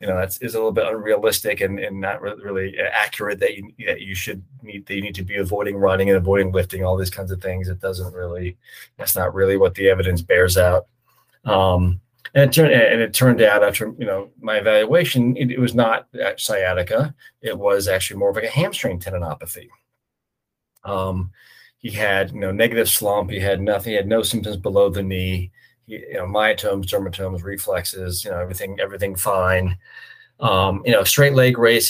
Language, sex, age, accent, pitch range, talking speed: English, male, 30-49, American, 95-115 Hz, 200 wpm